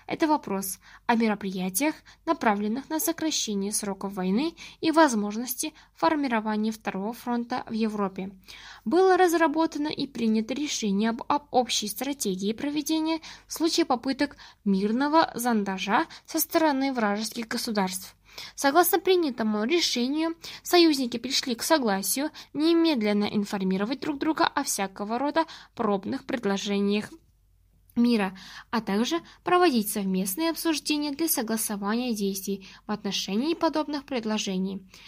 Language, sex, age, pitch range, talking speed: Russian, female, 10-29, 210-310 Hz, 110 wpm